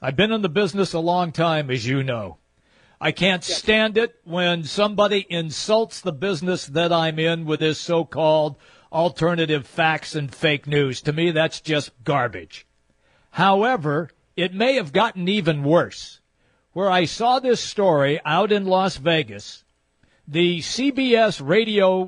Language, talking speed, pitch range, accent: English, 150 wpm, 155-205 Hz, American